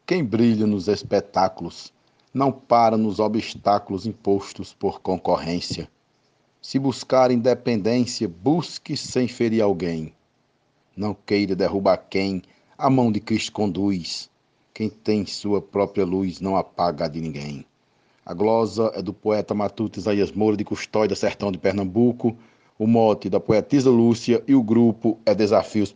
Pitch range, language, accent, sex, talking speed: 110-170 Hz, Portuguese, Brazilian, male, 140 wpm